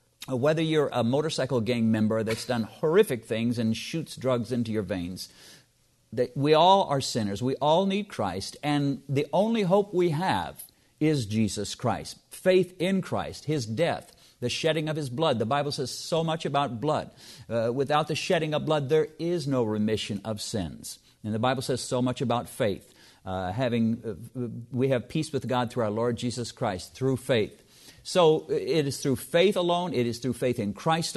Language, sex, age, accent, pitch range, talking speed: English, male, 50-69, American, 115-155 Hz, 185 wpm